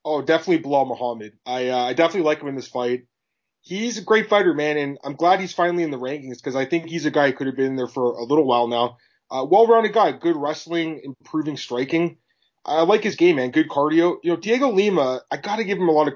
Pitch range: 145-190 Hz